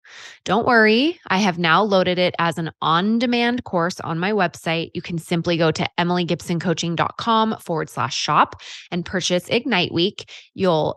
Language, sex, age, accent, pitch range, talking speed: English, female, 20-39, American, 165-200 Hz, 155 wpm